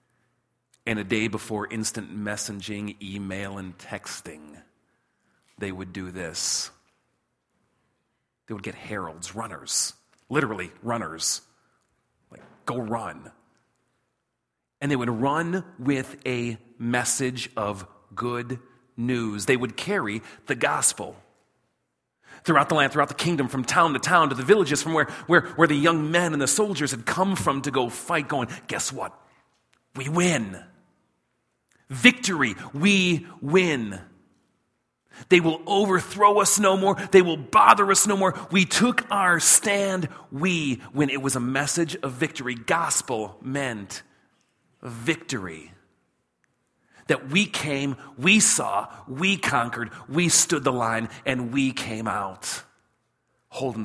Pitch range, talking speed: 110-165 Hz, 130 wpm